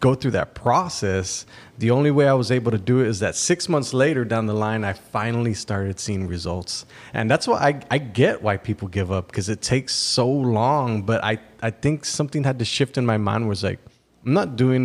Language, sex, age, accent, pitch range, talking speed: English, male, 30-49, American, 100-125 Hz, 230 wpm